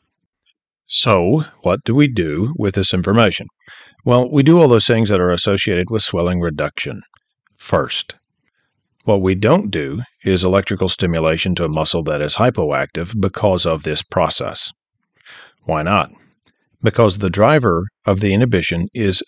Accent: American